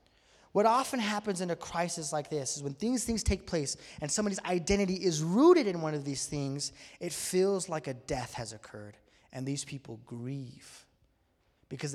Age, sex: 20-39, male